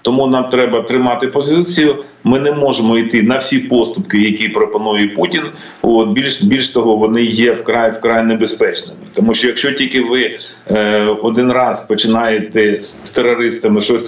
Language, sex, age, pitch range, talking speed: Ukrainian, male, 40-59, 105-130 Hz, 150 wpm